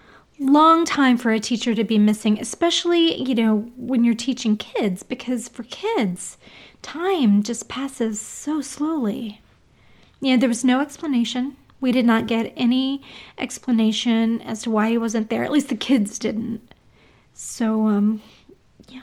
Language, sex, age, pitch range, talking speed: English, female, 30-49, 215-265 Hz, 160 wpm